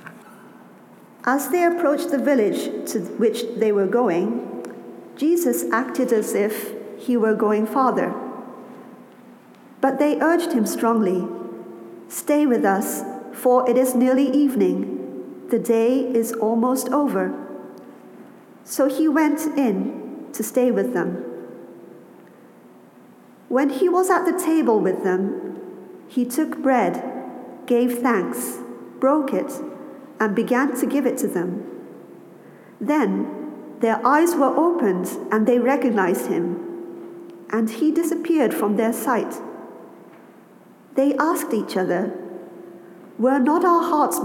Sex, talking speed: female, 120 wpm